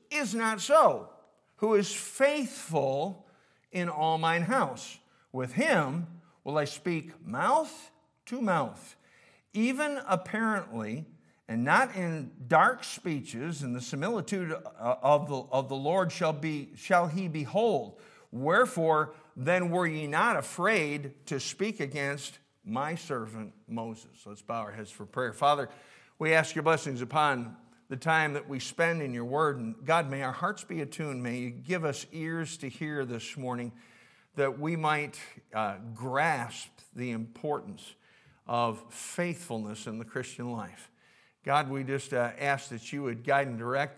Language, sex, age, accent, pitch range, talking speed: English, male, 50-69, American, 125-170 Hz, 150 wpm